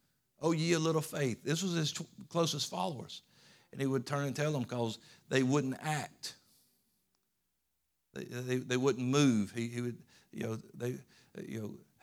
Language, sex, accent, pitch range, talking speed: English, male, American, 120-145 Hz, 175 wpm